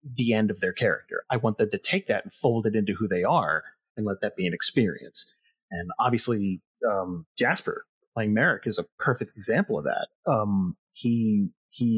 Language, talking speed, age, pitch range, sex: English, 195 wpm, 30-49, 105-180 Hz, male